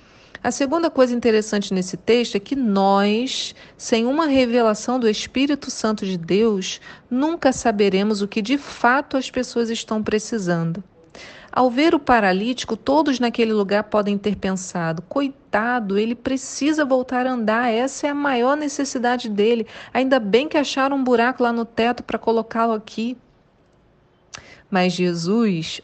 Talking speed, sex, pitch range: 145 wpm, female, 210-265 Hz